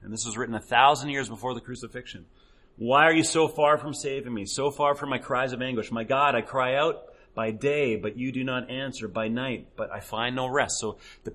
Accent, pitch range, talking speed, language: American, 115-135 Hz, 245 wpm, English